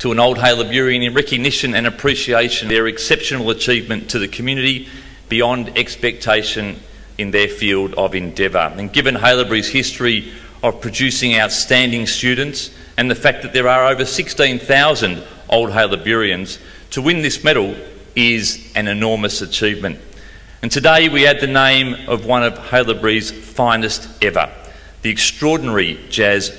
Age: 40-59